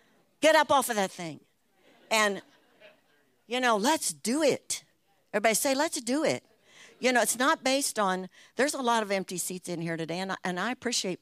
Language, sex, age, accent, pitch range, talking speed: English, female, 60-79, American, 160-210 Hz, 195 wpm